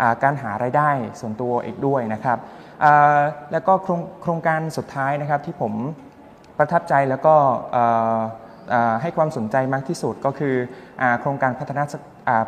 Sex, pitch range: male, 125-150 Hz